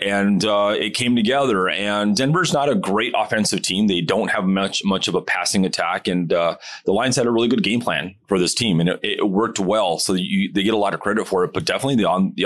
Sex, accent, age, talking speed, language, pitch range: male, American, 30-49, 260 wpm, English, 95-115 Hz